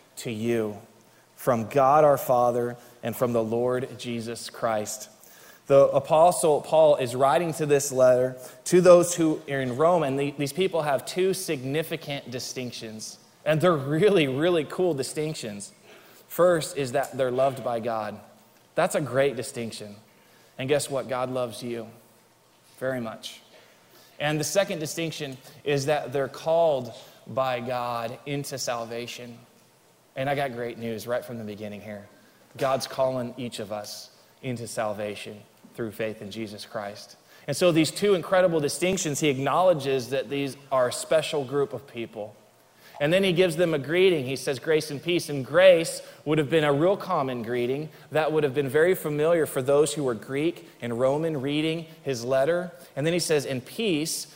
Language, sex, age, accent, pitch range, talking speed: English, male, 20-39, American, 125-160 Hz, 165 wpm